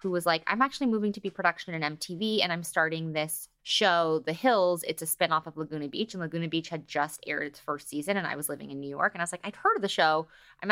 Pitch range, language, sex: 155-195 Hz, English, female